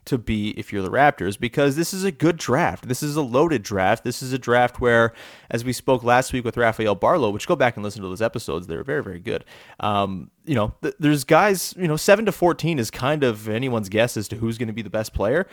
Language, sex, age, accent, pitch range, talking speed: English, male, 30-49, American, 110-145 Hz, 265 wpm